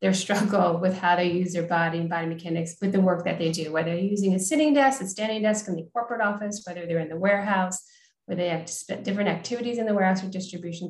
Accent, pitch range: American, 180-210 Hz